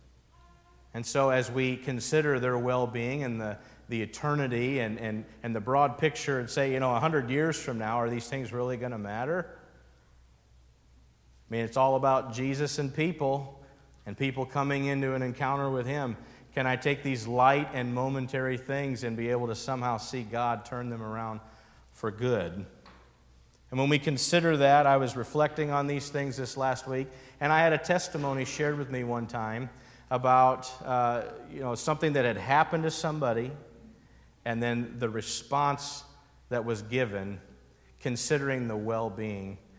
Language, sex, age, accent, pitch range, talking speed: English, male, 50-69, American, 110-135 Hz, 170 wpm